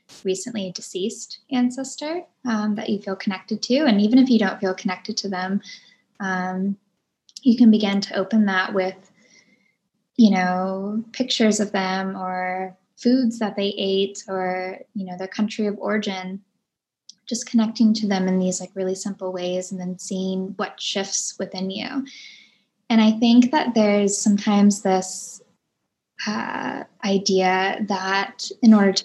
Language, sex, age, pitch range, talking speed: English, female, 10-29, 185-215 Hz, 150 wpm